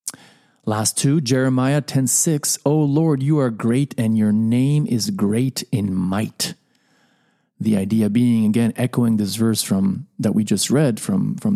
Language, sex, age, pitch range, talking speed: English, male, 40-59, 110-140 Hz, 155 wpm